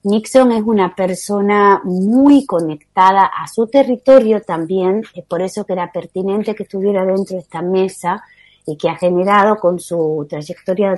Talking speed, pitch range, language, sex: 160 wpm, 170-215 Hz, Spanish, female